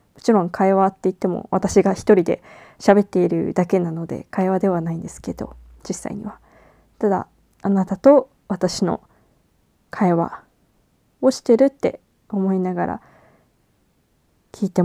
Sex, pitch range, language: female, 175-200 Hz, Japanese